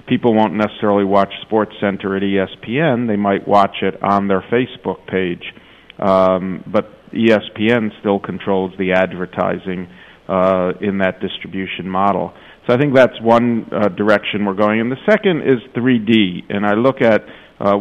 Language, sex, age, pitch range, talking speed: English, male, 50-69, 95-110 Hz, 160 wpm